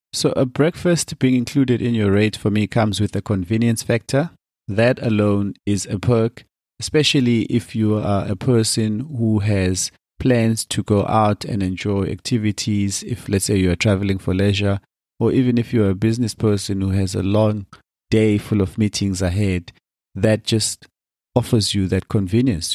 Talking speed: 170 wpm